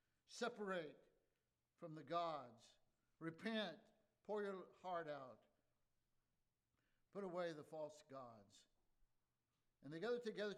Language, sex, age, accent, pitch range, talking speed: English, male, 60-79, American, 170-210 Hz, 100 wpm